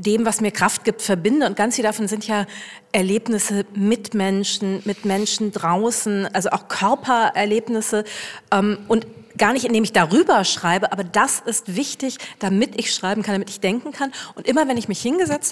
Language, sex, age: German, female, 40-59